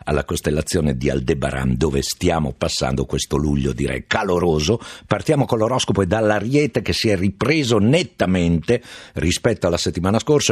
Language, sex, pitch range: Italian, male, 85-125 Hz